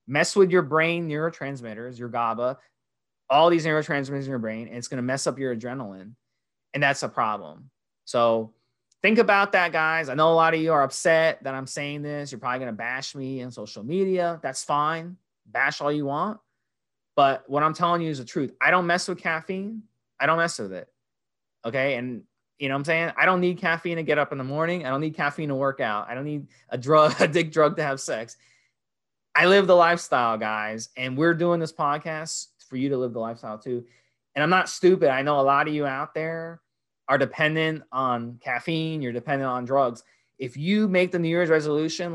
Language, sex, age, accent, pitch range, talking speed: English, male, 20-39, American, 130-165 Hz, 220 wpm